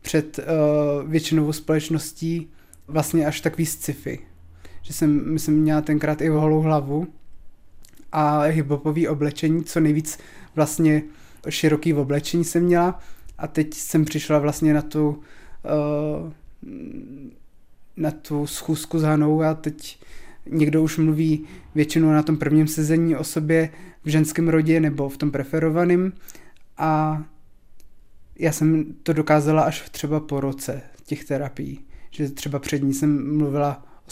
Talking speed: 135 wpm